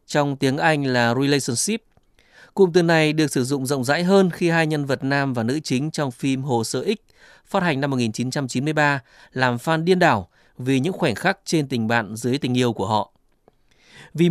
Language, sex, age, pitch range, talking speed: Vietnamese, male, 20-39, 125-160 Hz, 200 wpm